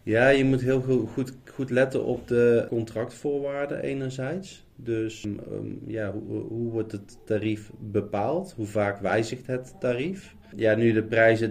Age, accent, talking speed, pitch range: 30-49, Dutch, 155 wpm, 105-125 Hz